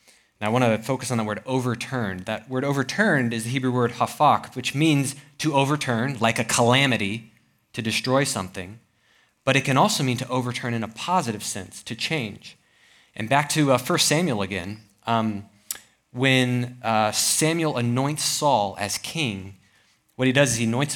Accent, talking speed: American, 175 wpm